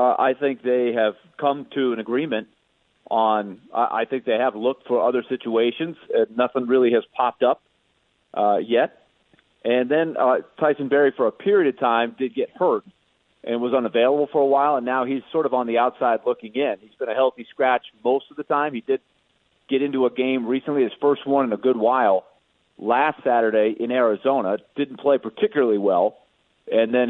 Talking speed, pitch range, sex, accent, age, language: 190 wpm, 120-140 Hz, male, American, 40-59, English